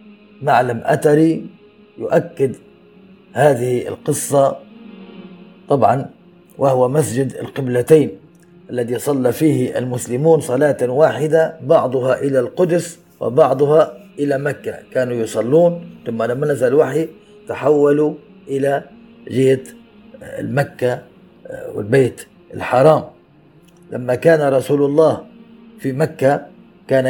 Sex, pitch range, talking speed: male, 135-185 Hz, 90 wpm